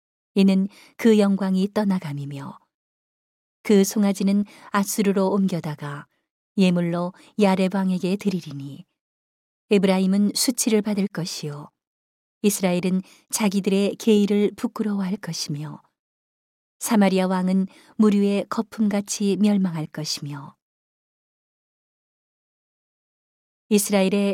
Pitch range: 175-205 Hz